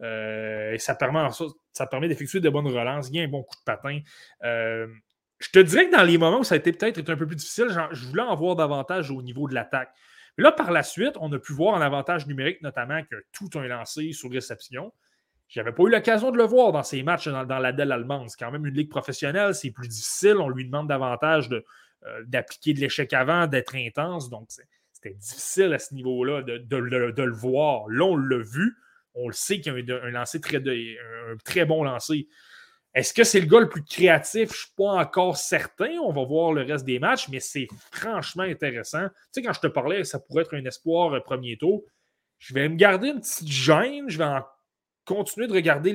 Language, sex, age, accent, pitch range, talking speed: French, male, 20-39, Canadian, 130-175 Hz, 240 wpm